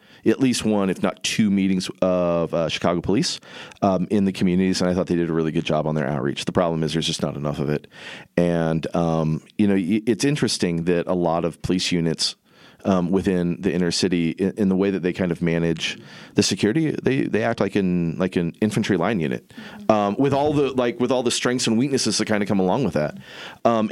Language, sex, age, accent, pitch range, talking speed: English, male, 40-59, American, 85-110 Hz, 230 wpm